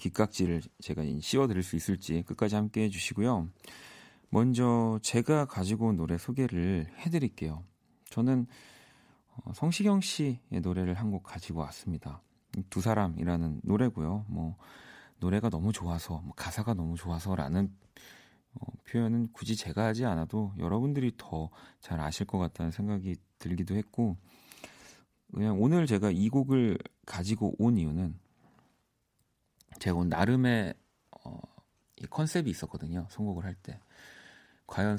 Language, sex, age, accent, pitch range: Korean, male, 40-59, native, 85-120 Hz